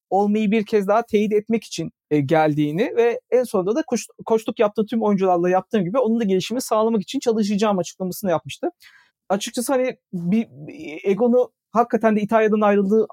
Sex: male